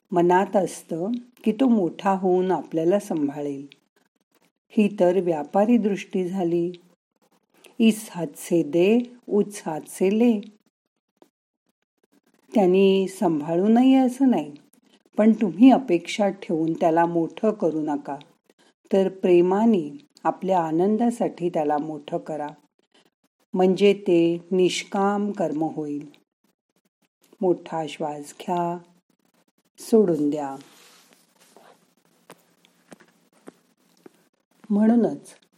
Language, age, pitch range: Marathi, 50-69, 165-215 Hz